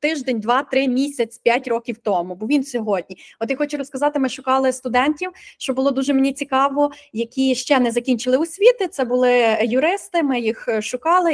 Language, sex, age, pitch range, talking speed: Ukrainian, female, 20-39, 230-295 Hz, 170 wpm